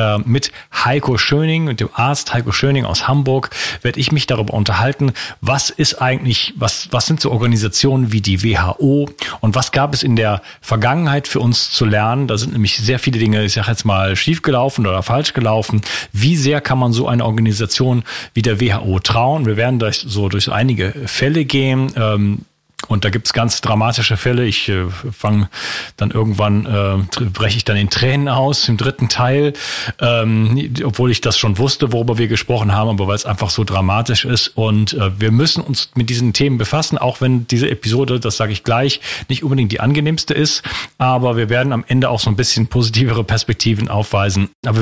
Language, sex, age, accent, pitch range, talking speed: German, male, 40-59, German, 110-135 Hz, 195 wpm